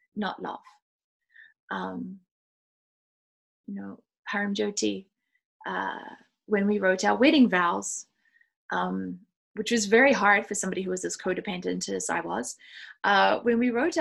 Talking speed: 135 wpm